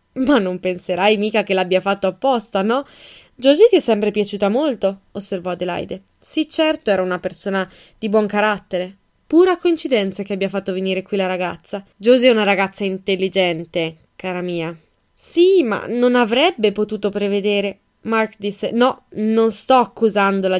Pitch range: 190-240 Hz